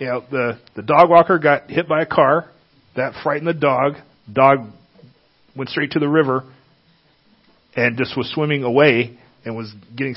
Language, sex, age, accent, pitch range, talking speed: English, male, 40-59, American, 120-155 Hz, 170 wpm